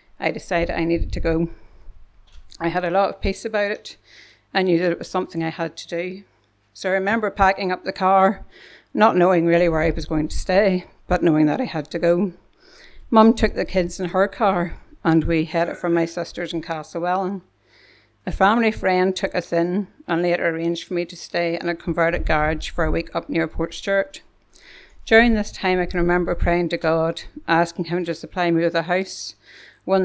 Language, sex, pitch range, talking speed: English, female, 165-190 Hz, 210 wpm